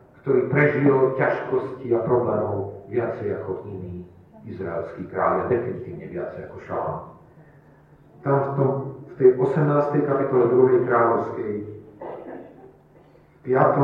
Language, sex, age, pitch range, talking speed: Slovak, male, 40-59, 115-150 Hz, 110 wpm